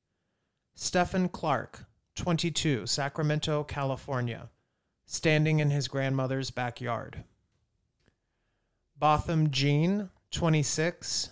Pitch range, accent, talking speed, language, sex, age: 120-155 Hz, American, 70 wpm, English, male, 30-49